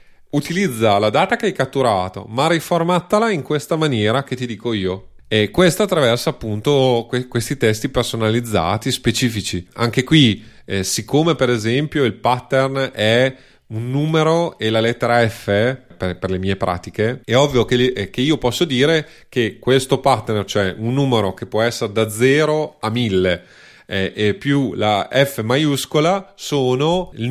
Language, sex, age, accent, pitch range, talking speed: Italian, male, 30-49, native, 105-135 Hz, 160 wpm